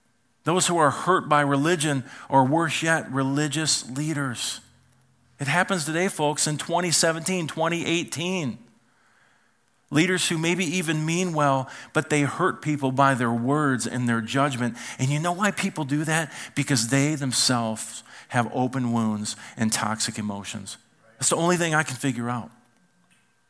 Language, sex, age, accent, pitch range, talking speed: English, male, 40-59, American, 125-155 Hz, 150 wpm